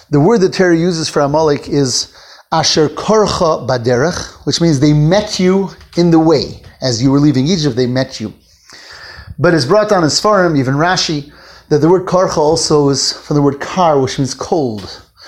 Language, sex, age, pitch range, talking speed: English, male, 30-49, 145-195 Hz, 190 wpm